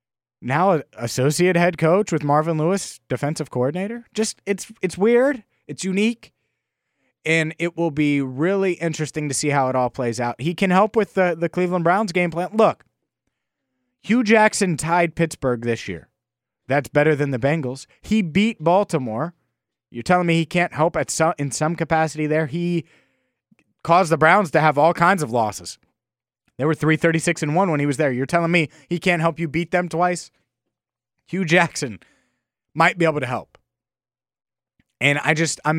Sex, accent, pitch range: male, American, 135-175 Hz